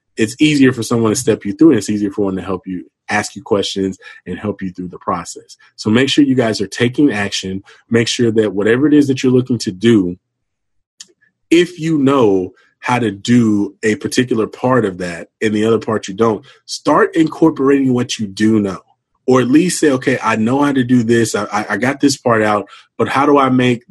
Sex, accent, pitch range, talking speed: male, American, 105-140 Hz, 225 wpm